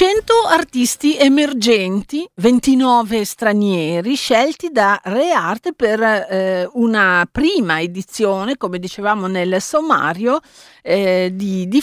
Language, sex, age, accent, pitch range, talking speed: Italian, female, 50-69, native, 195-265 Hz, 105 wpm